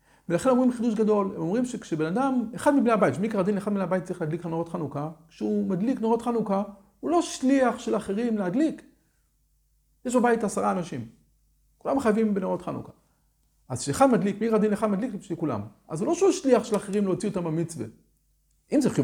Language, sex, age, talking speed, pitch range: Hebrew, male, 50-69, 140 wpm, 160-235 Hz